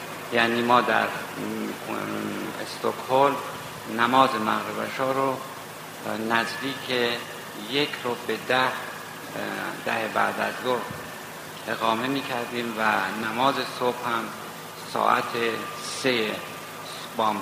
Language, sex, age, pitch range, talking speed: Persian, male, 50-69, 110-135 Hz, 90 wpm